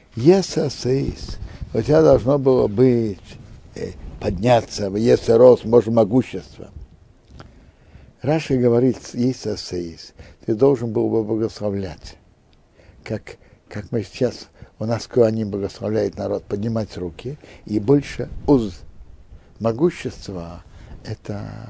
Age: 60-79